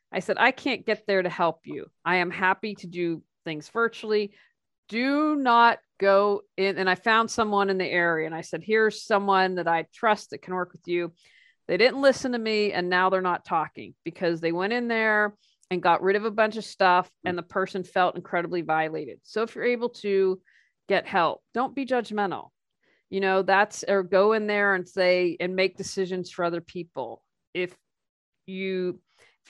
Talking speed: 195 wpm